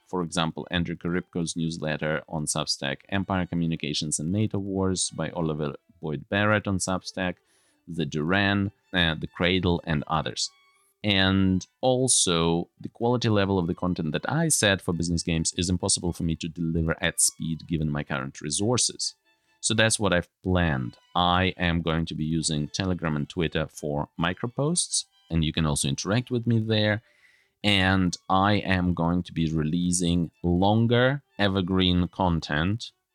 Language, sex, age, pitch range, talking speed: English, male, 30-49, 85-105 Hz, 155 wpm